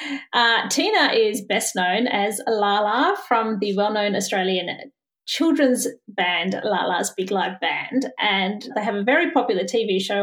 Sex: female